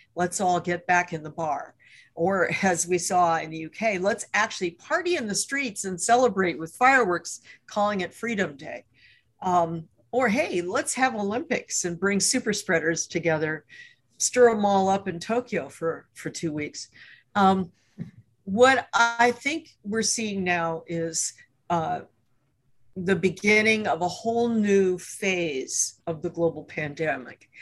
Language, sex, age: English, female, 50-69